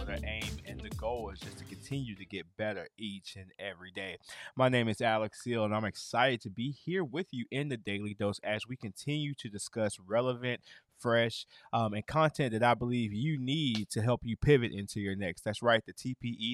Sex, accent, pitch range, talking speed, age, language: male, American, 105-135 Hz, 215 wpm, 20-39, English